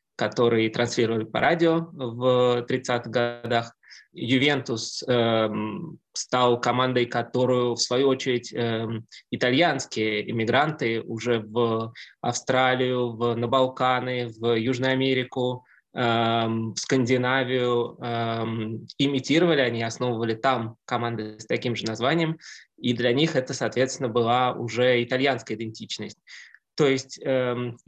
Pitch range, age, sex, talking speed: 115-135 Hz, 20-39, male, 110 wpm